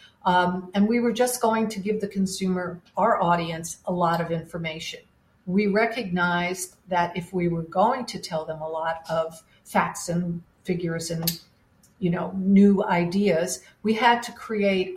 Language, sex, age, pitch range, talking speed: English, female, 50-69, 175-200 Hz, 165 wpm